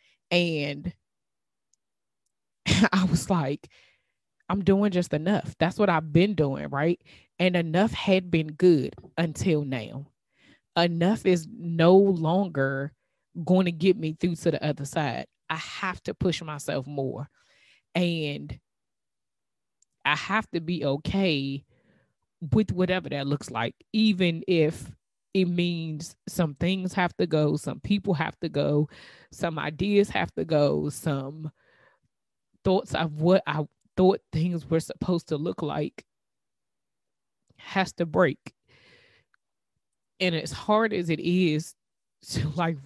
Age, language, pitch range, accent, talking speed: 20-39, English, 150-185 Hz, American, 130 wpm